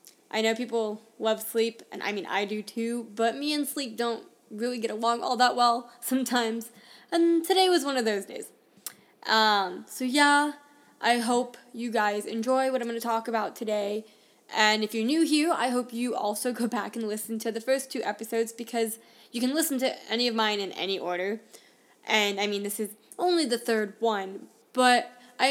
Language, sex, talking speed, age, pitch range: English, female, 200 wpm, 10-29, 220-260 Hz